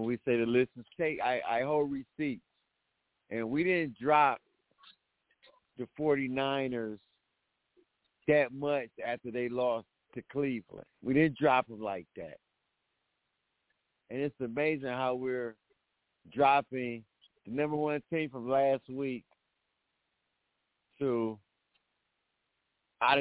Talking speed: 115 wpm